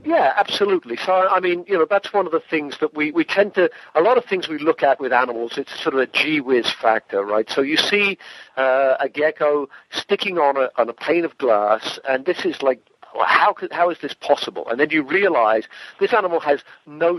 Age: 50-69